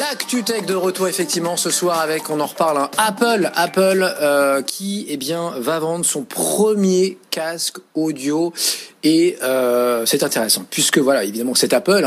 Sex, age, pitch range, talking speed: male, 40-59, 135-190 Hz, 165 wpm